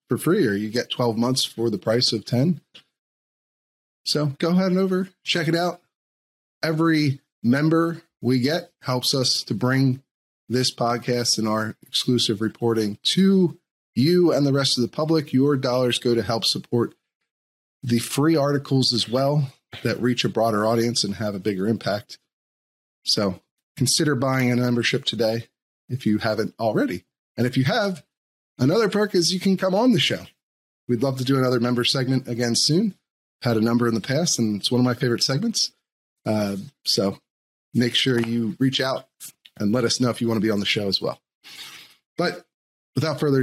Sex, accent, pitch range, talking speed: male, American, 115-150 Hz, 180 wpm